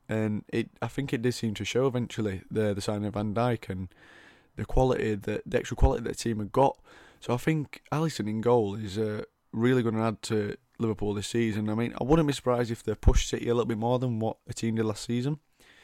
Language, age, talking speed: English, 20-39, 245 wpm